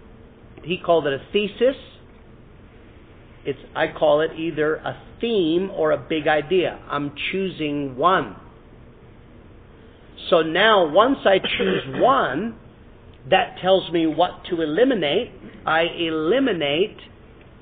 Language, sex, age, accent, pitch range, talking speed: English, male, 50-69, American, 120-165 Hz, 110 wpm